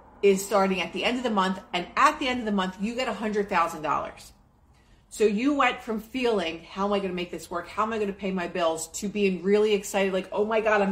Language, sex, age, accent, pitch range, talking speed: English, female, 30-49, American, 175-220 Hz, 270 wpm